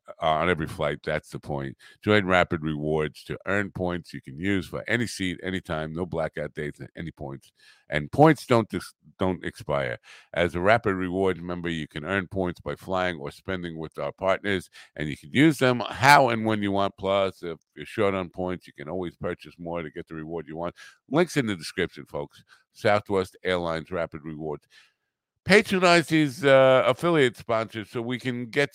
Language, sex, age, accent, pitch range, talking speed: English, male, 50-69, American, 85-120 Hz, 195 wpm